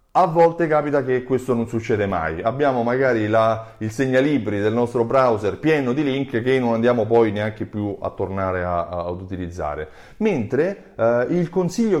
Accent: native